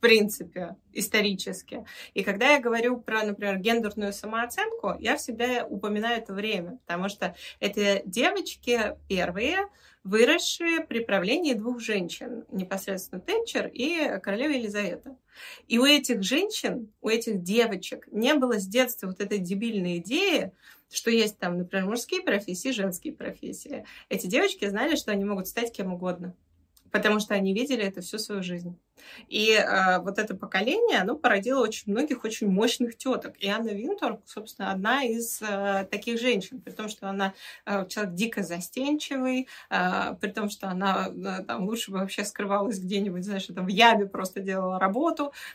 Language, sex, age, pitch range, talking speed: Russian, female, 20-39, 195-245 Hz, 160 wpm